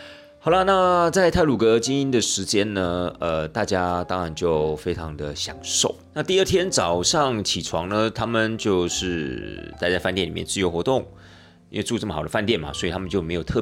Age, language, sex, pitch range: 30-49, Chinese, male, 80-110 Hz